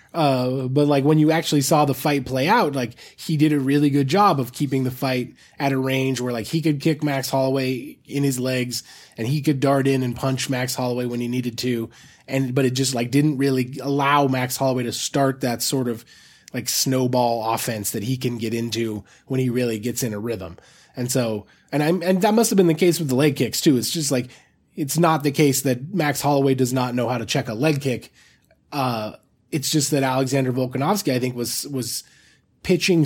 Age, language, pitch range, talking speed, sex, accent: 20-39, English, 125-155 Hz, 225 wpm, male, American